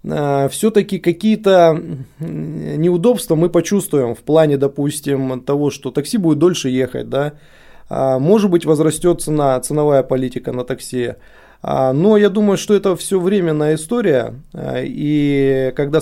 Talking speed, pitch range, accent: 125 wpm, 140-175 Hz, native